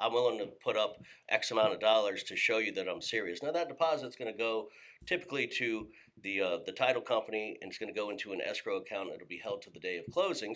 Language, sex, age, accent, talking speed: English, male, 40-59, American, 260 wpm